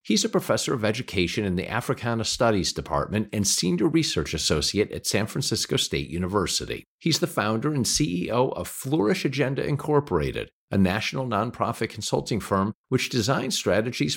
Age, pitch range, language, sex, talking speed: 50-69, 100-135 Hz, English, male, 155 wpm